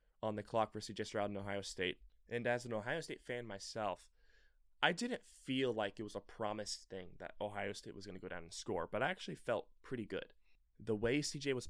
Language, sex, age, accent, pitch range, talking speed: English, male, 20-39, American, 100-120 Hz, 230 wpm